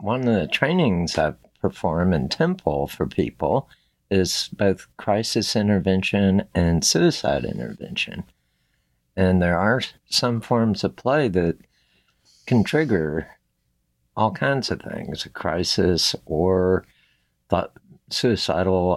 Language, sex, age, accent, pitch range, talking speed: English, male, 60-79, American, 80-105 Hz, 110 wpm